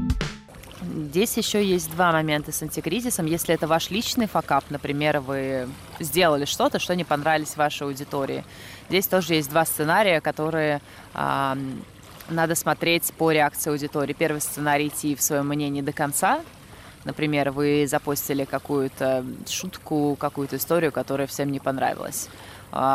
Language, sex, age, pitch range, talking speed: Russian, female, 20-39, 140-160 Hz, 135 wpm